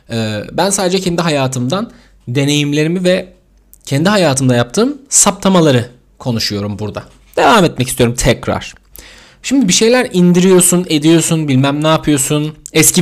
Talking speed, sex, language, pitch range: 115 wpm, male, Turkish, 120-155 Hz